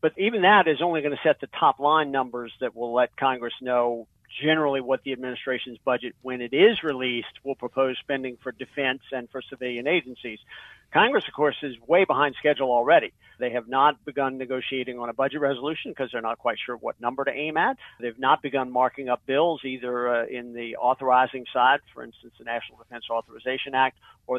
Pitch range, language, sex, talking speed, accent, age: 130-160 Hz, English, male, 200 wpm, American, 50-69